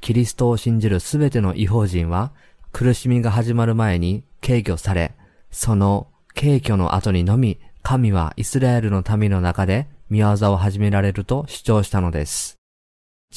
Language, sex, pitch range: Japanese, male, 95-120 Hz